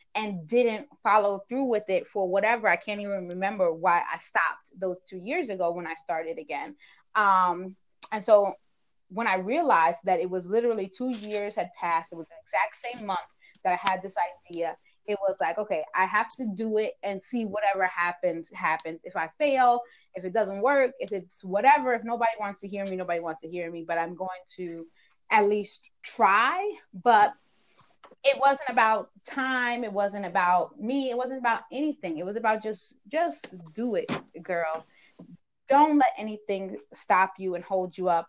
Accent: American